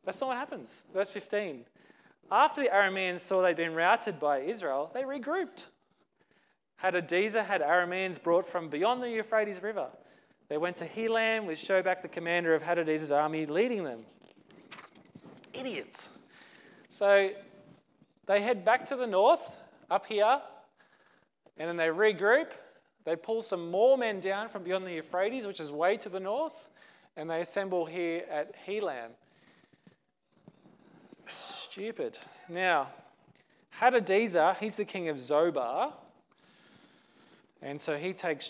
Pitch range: 160-215 Hz